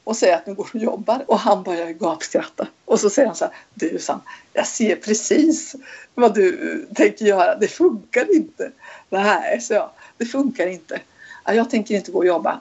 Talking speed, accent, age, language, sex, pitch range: 190 wpm, native, 50-69, Swedish, female, 185-240 Hz